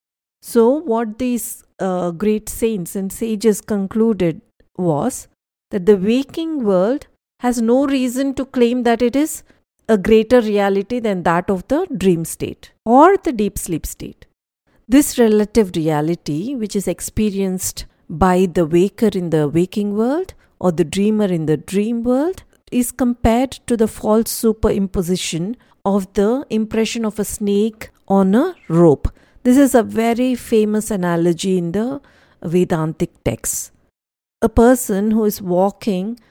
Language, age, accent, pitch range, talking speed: English, 50-69, Indian, 185-245 Hz, 140 wpm